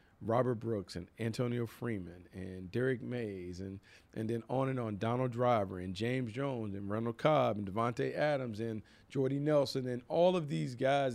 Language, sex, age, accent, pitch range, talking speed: English, male, 40-59, American, 105-125 Hz, 180 wpm